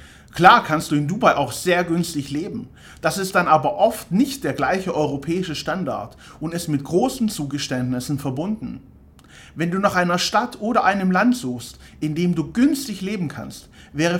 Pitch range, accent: 130-190 Hz, German